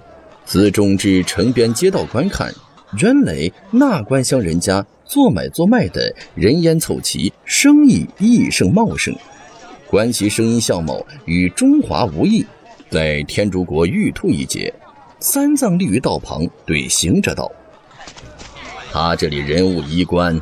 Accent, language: native, Chinese